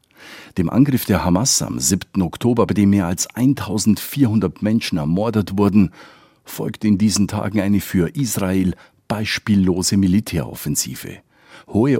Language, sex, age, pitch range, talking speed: German, male, 50-69, 90-115 Hz, 125 wpm